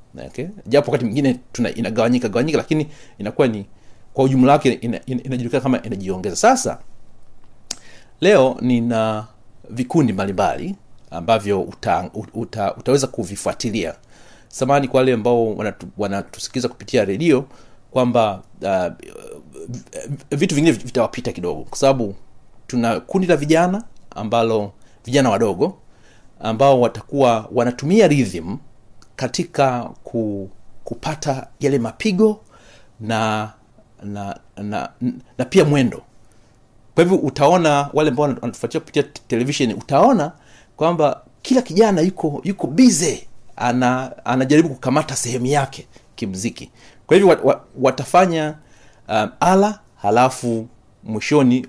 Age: 40-59